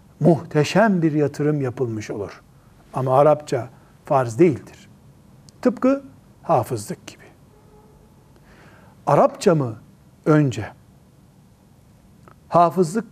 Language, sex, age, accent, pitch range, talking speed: Turkish, male, 60-79, native, 135-170 Hz, 75 wpm